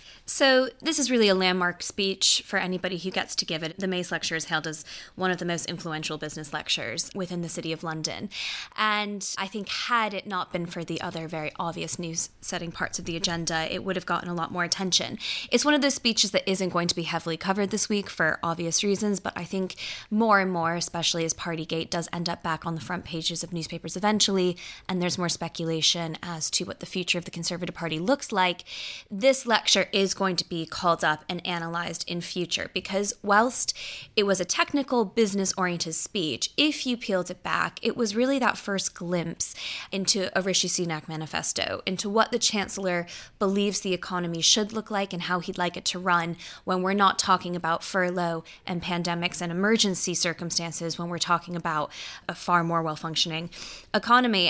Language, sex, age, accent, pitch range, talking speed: English, female, 10-29, American, 170-200 Hz, 200 wpm